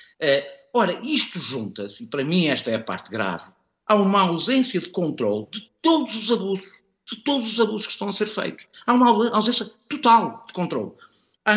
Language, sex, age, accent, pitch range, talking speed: Portuguese, male, 50-69, Portuguese, 150-215 Hz, 190 wpm